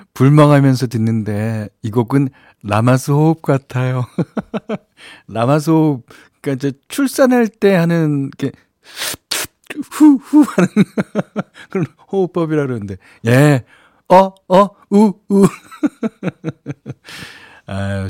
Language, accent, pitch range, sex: Korean, native, 110-170 Hz, male